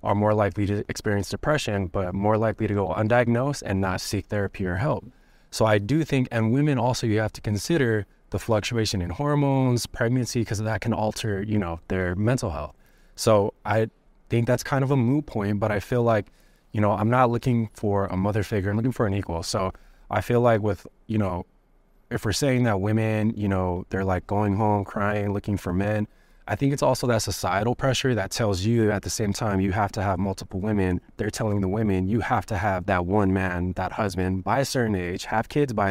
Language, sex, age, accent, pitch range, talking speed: English, male, 20-39, American, 95-120 Hz, 220 wpm